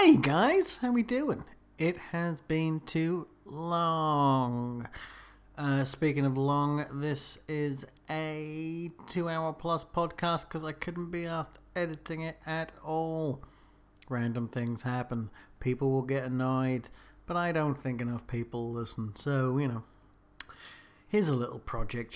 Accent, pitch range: British, 120-150 Hz